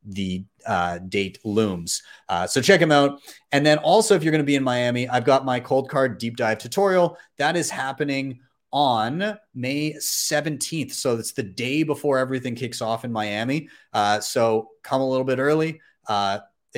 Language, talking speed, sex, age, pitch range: English, 180 wpm, male, 30-49, 110-145 Hz